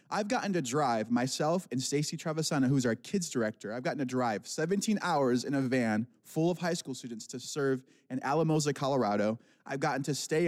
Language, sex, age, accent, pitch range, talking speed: English, male, 20-39, American, 125-160 Hz, 200 wpm